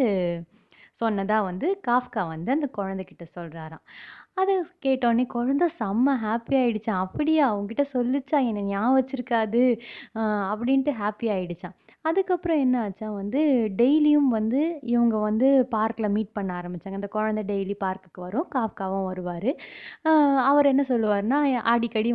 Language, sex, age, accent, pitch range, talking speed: Tamil, female, 20-39, native, 200-260 Hz, 125 wpm